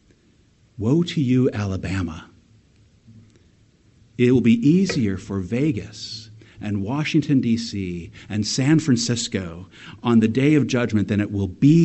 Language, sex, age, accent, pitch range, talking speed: English, male, 50-69, American, 105-130 Hz, 125 wpm